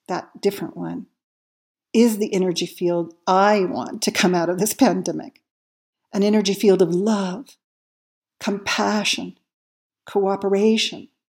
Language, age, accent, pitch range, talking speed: English, 50-69, American, 185-230 Hz, 115 wpm